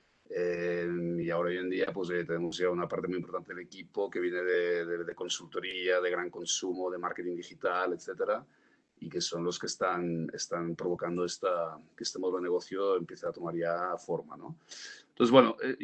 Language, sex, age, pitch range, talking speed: Spanish, male, 40-59, 85-125 Hz, 195 wpm